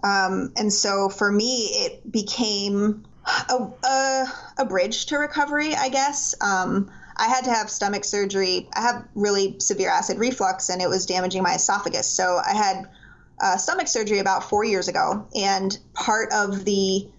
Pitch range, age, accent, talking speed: 190-240 Hz, 20-39, American, 170 wpm